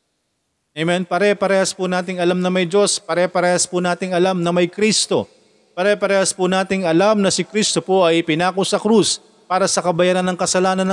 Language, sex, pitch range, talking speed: Filipino, male, 135-185 Hz, 175 wpm